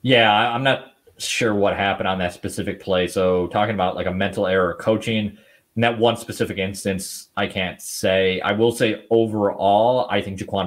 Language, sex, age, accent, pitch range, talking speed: English, male, 30-49, American, 90-105 Hz, 185 wpm